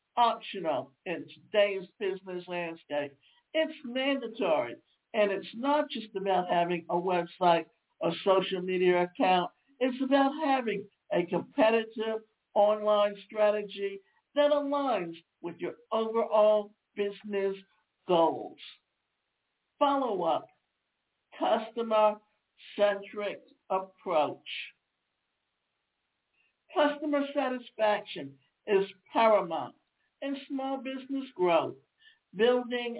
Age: 60-79